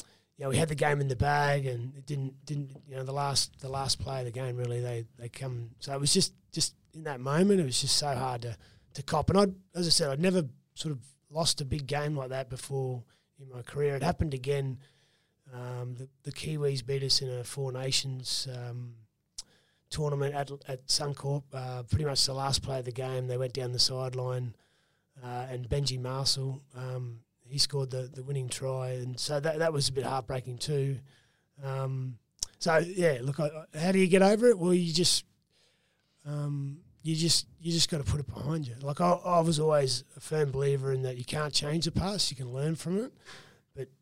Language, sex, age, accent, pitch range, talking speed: English, male, 30-49, Australian, 130-150 Hz, 215 wpm